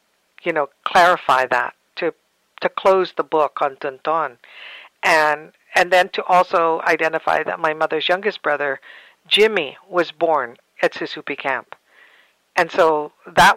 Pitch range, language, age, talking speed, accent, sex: 155-180 Hz, English, 60-79, 135 wpm, American, female